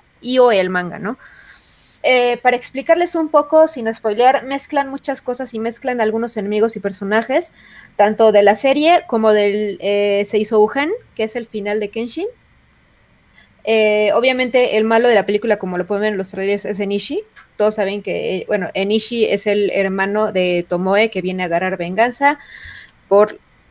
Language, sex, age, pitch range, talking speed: Spanish, female, 30-49, 200-255 Hz, 175 wpm